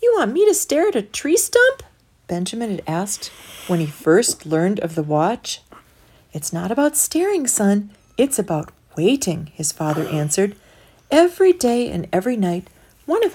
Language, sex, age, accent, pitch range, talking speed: English, female, 40-59, American, 160-230 Hz, 165 wpm